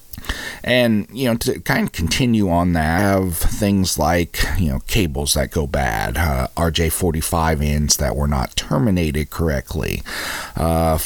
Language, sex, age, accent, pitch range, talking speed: English, male, 40-59, American, 75-90 Hz, 150 wpm